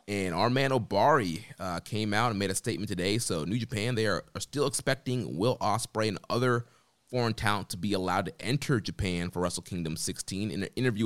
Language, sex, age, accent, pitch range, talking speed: English, male, 20-39, American, 95-120 Hz, 210 wpm